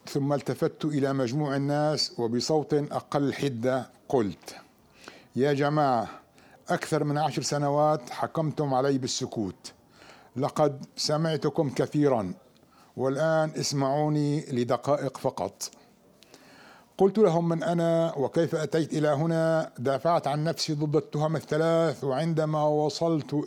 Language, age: Arabic, 60-79